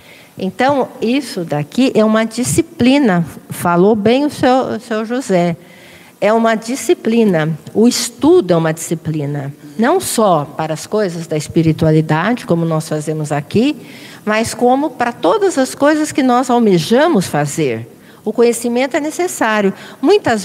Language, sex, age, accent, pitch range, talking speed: Portuguese, female, 50-69, Brazilian, 175-235 Hz, 135 wpm